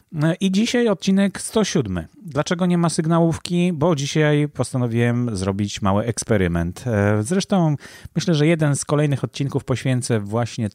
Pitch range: 110-145 Hz